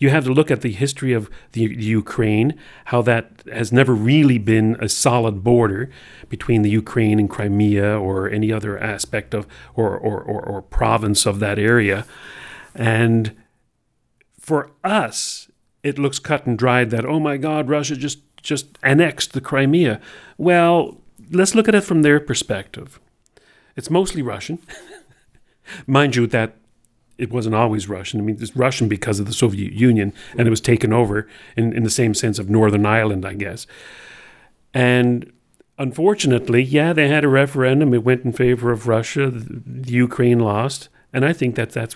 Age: 40-59